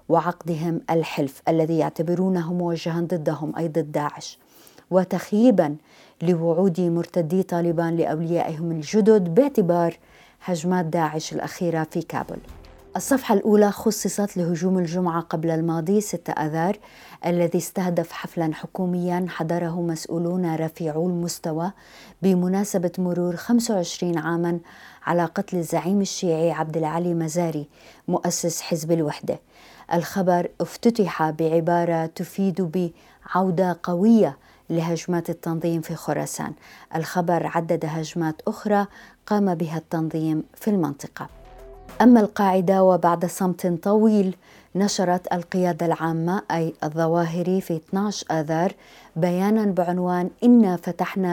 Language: Arabic